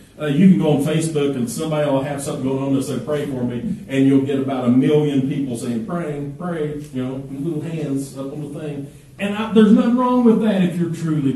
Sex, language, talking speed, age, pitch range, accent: male, English, 240 wpm, 40-59, 140-180 Hz, American